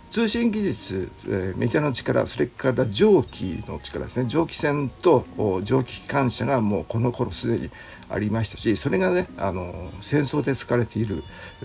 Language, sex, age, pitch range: Japanese, male, 60-79, 95-135 Hz